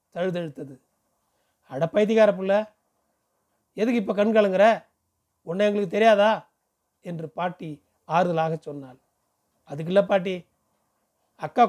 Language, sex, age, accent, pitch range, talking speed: Tamil, male, 30-49, native, 165-215 Hz, 75 wpm